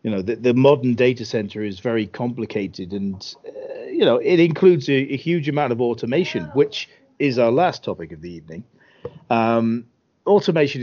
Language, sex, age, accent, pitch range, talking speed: English, male, 40-59, British, 115-145 Hz, 175 wpm